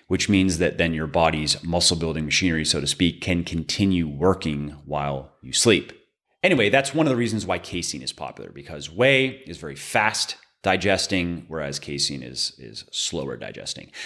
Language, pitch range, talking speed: English, 80-105 Hz, 165 wpm